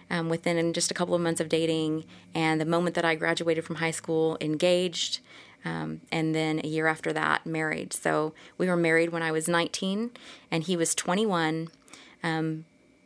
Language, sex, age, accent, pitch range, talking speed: English, female, 30-49, American, 160-185 Hz, 190 wpm